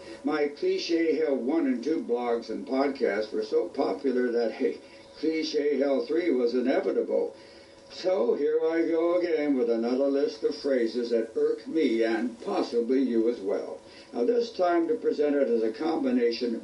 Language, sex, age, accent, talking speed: English, male, 60-79, American, 165 wpm